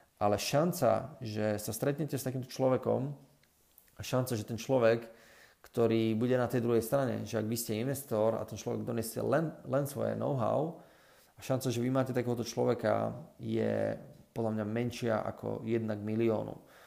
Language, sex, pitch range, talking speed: Slovak, male, 110-125 Hz, 165 wpm